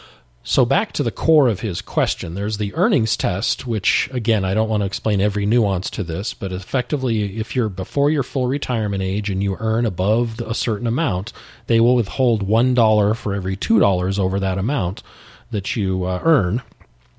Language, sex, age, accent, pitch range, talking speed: English, male, 40-59, American, 100-120 Hz, 185 wpm